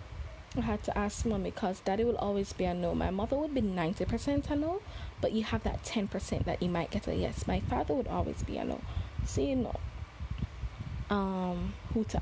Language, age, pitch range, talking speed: English, 20-39, 175-220 Hz, 205 wpm